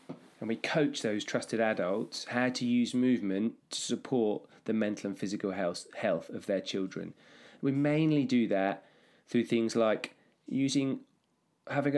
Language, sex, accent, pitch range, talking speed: English, male, British, 110-125 Hz, 150 wpm